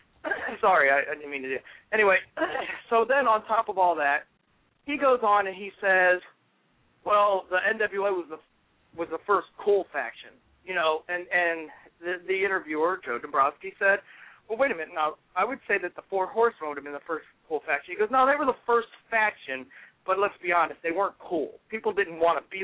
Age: 40-59